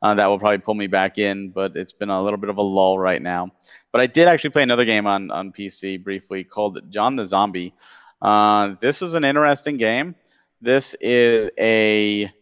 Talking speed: 210 wpm